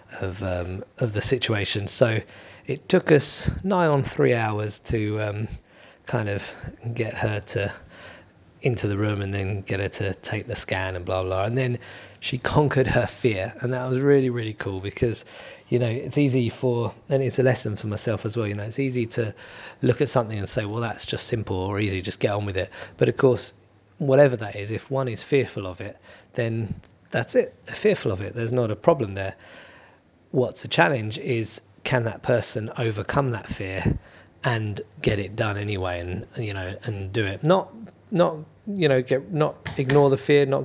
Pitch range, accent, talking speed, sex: 105-130 Hz, British, 200 wpm, male